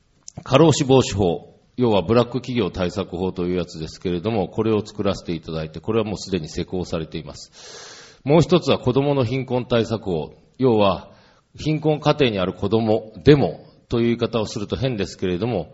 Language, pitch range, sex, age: Japanese, 95-130 Hz, male, 40-59